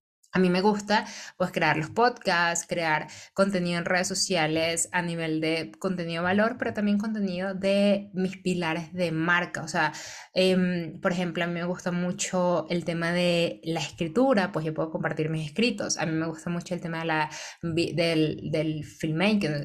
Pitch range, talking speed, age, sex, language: 170-200 Hz, 170 wpm, 20-39, female, Spanish